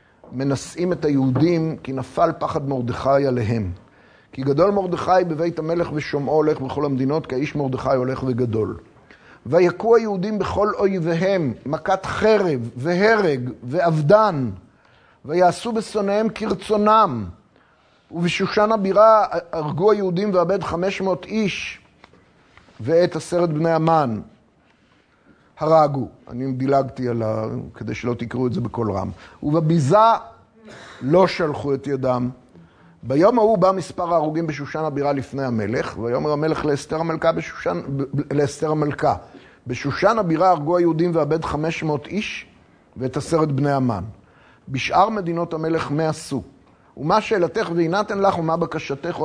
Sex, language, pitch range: male, Hebrew, 130-180 Hz